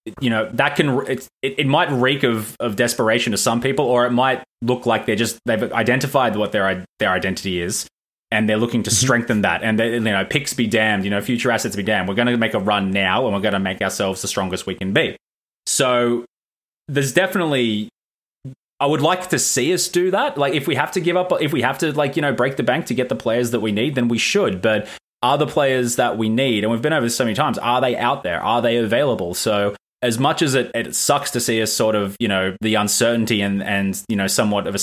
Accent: Australian